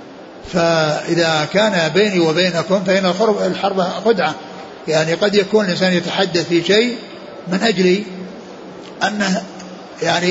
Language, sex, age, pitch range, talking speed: Arabic, male, 60-79, 175-210 Hz, 105 wpm